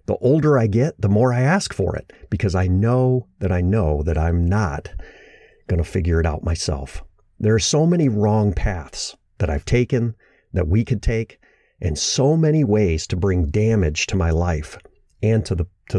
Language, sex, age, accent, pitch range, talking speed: English, male, 50-69, American, 90-120 Hz, 190 wpm